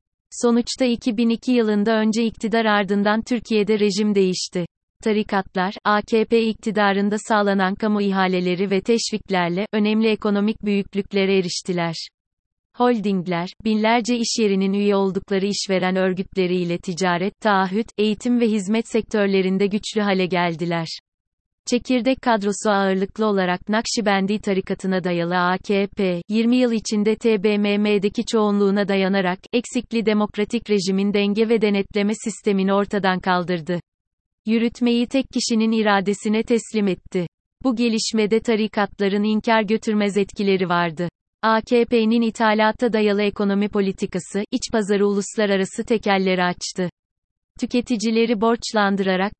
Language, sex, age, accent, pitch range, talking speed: Turkish, female, 30-49, native, 190-225 Hz, 105 wpm